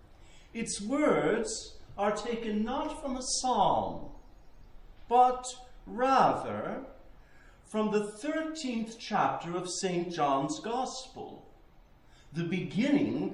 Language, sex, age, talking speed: English, male, 60-79, 90 wpm